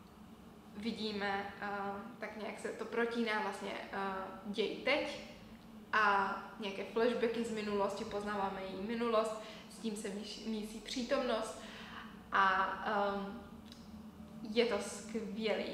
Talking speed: 95 wpm